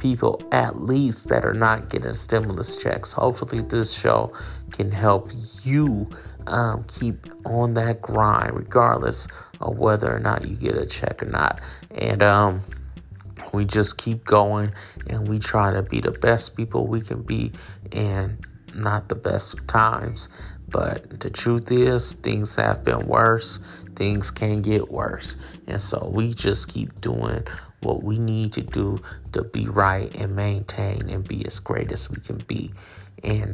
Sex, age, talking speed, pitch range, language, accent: male, 30-49, 165 wpm, 100-115 Hz, English, American